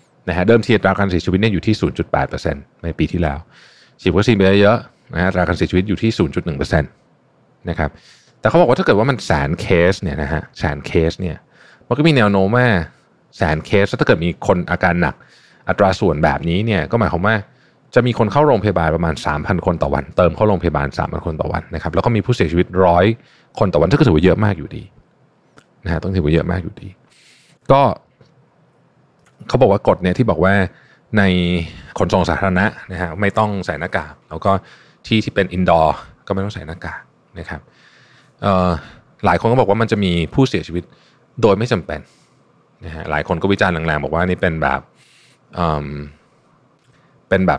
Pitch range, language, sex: 85-110 Hz, Thai, male